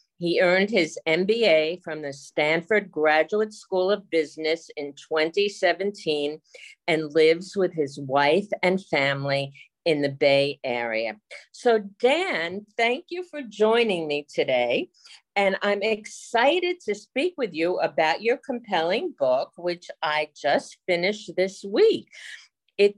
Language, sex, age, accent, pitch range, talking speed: English, female, 50-69, American, 160-225 Hz, 130 wpm